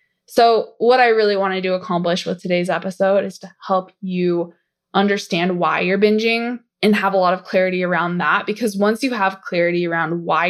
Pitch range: 185-230 Hz